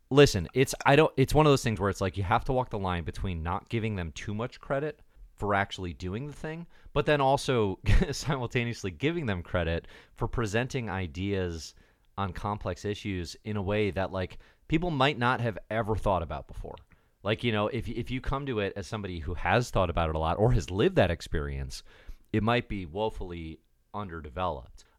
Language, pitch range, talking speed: English, 85-115 Hz, 200 wpm